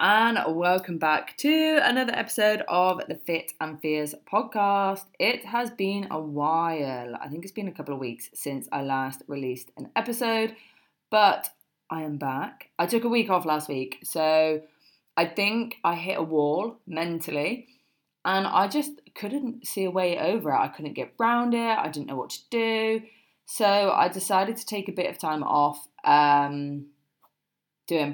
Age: 20-39